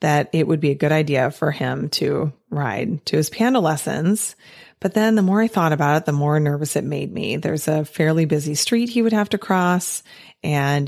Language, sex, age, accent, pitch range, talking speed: English, female, 30-49, American, 145-185 Hz, 220 wpm